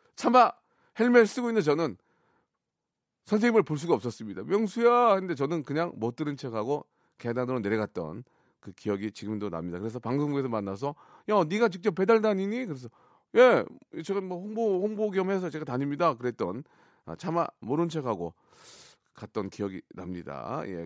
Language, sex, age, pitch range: Korean, male, 40-59, 125-185 Hz